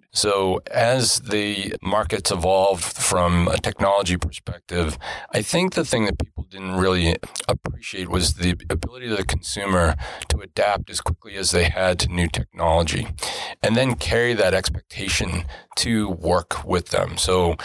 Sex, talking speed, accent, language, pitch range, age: male, 150 wpm, American, English, 85-95 Hz, 40-59